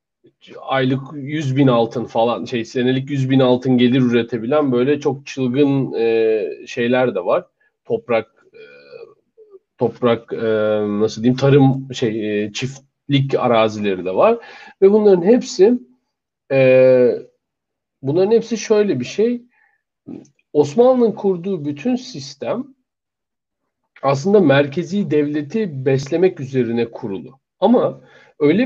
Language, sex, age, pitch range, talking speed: Turkish, male, 40-59, 135-225 Hz, 100 wpm